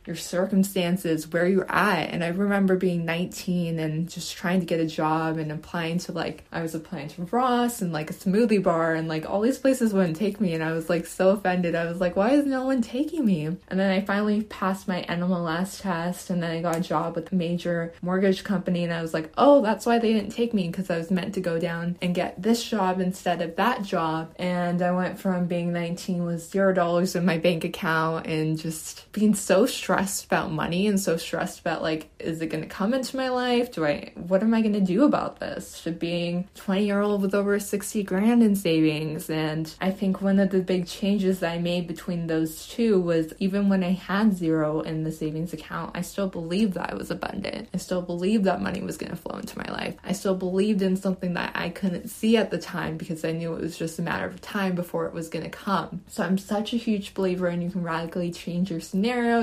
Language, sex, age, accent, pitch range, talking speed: English, female, 20-39, American, 170-200 Hz, 235 wpm